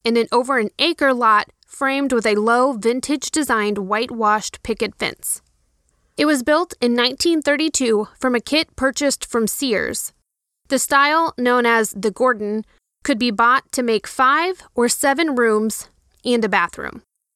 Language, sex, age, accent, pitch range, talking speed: English, female, 20-39, American, 225-285 Hz, 140 wpm